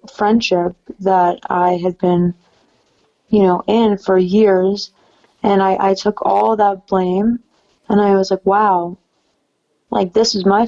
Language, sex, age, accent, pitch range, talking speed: English, female, 20-39, American, 190-210 Hz, 145 wpm